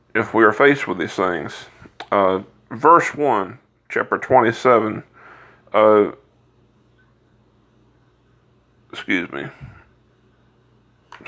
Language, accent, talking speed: English, American, 85 wpm